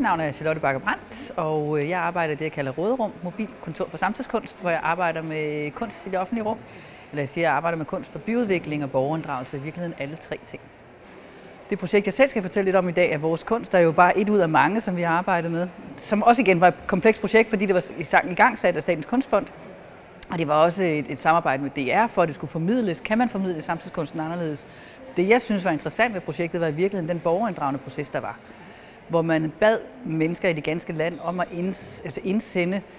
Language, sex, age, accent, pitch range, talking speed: Danish, female, 30-49, native, 160-205 Hz, 235 wpm